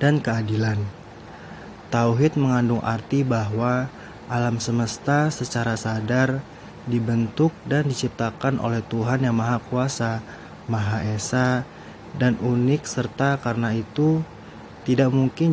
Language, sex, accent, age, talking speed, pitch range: Indonesian, male, native, 20-39, 105 wpm, 110-125 Hz